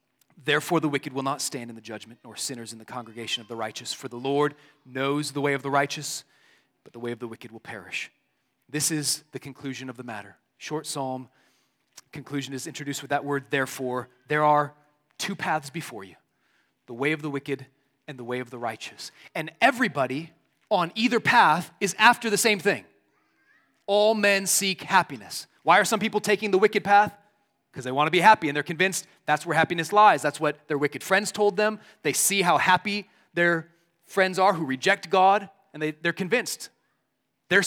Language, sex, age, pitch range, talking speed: English, male, 30-49, 135-180 Hz, 195 wpm